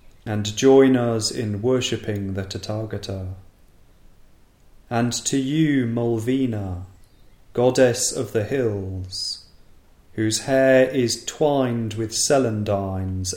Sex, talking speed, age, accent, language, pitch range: male, 95 wpm, 30-49, British, English, 95-125 Hz